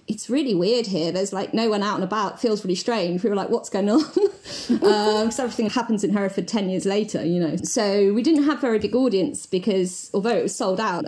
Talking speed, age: 240 wpm, 30-49